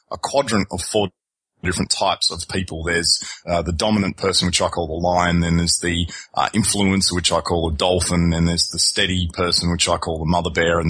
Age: 30-49